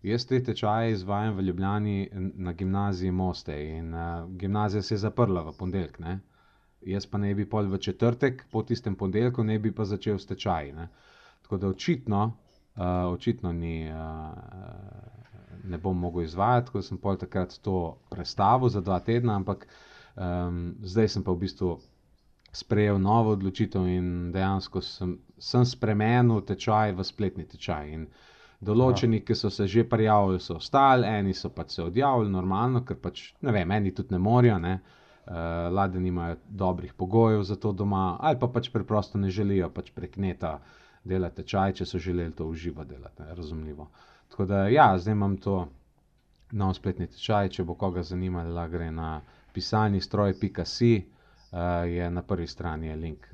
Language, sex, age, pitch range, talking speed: English, male, 30-49, 90-110 Hz, 165 wpm